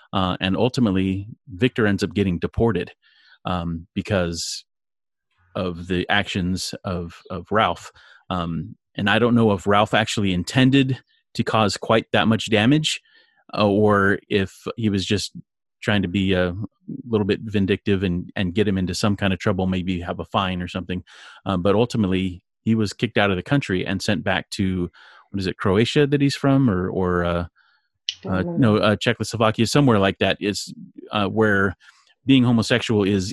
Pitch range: 90-110 Hz